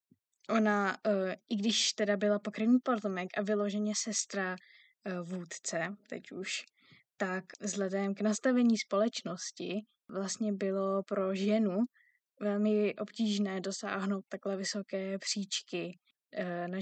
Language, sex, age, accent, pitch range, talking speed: Czech, female, 20-39, native, 185-210 Hz, 105 wpm